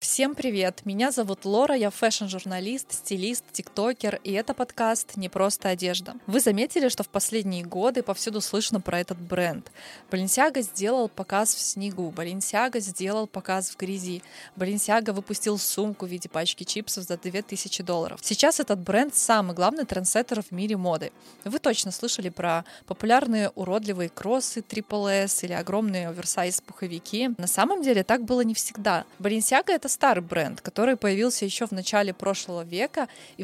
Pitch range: 185-235 Hz